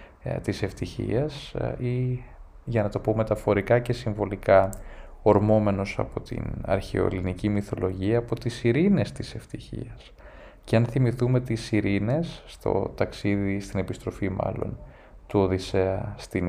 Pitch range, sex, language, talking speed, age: 100-125 Hz, male, Greek, 120 wpm, 20-39